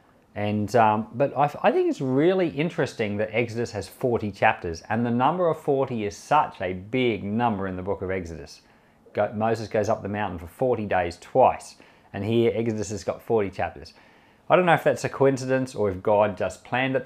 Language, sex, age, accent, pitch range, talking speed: English, male, 40-59, Australian, 105-135 Hz, 195 wpm